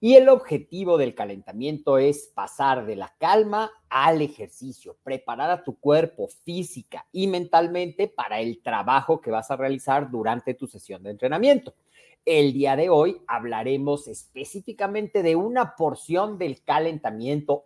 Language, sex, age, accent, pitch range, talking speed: Spanish, male, 40-59, Mexican, 140-195 Hz, 145 wpm